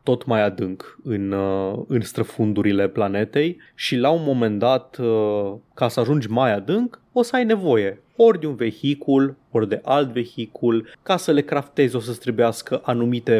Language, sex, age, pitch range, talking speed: Romanian, male, 20-39, 115-145 Hz, 160 wpm